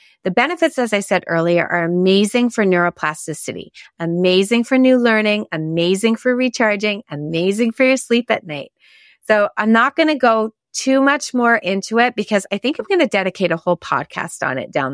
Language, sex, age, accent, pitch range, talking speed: English, female, 30-49, American, 170-230 Hz, 190 wpm